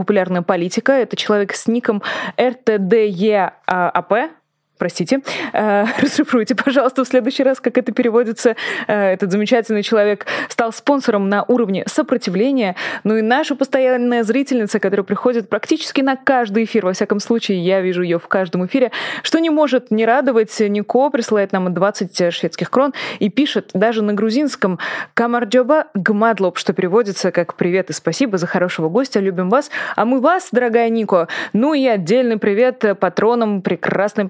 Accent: native